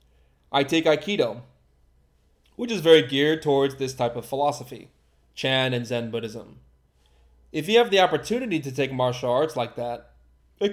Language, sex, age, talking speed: English, male, 20-39, 155 wpm